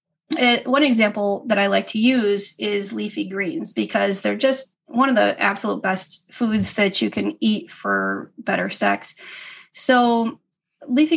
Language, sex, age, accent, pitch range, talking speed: English, female, 30-49, American, 195-255 Hz, 150 wpm